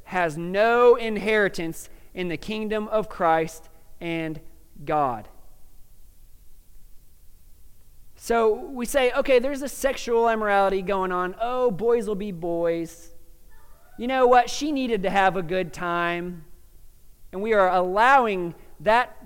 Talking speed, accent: 125 wpm, American